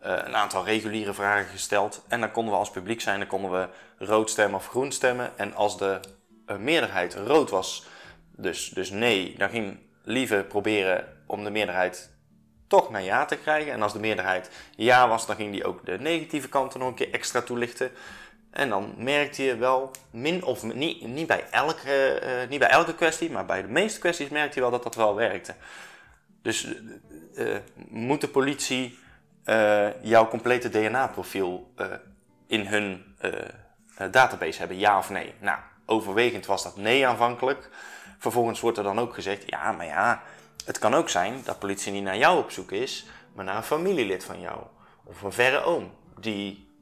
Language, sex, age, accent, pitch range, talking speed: Dutch, male, 20-39, Dutch, 100-130 Hz, 185 wpm